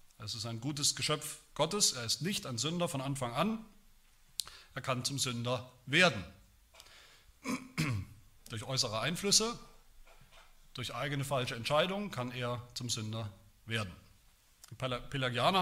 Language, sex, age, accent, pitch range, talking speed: German, male, 40-59, German, 125-170 Hz, 125 wpm